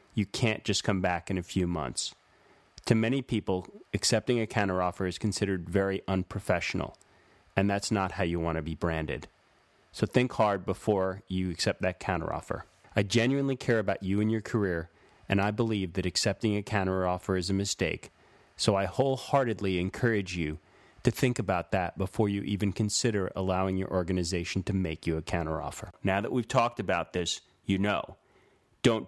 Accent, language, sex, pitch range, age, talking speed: American, English, male, 95-115 Hz, 30-49, 175 wpm